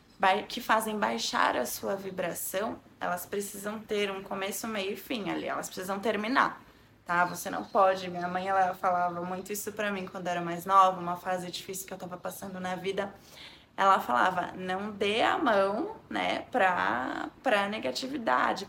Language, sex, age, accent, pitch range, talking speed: Portuguese, female, 20-39, Brazilian, 185-230 Hz, 170 wpm